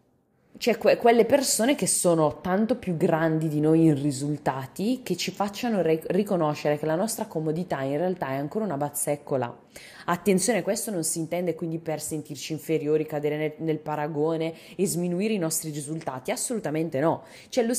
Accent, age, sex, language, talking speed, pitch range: native, 20-39, female, Italian, 165 wpm, 160-220 Hz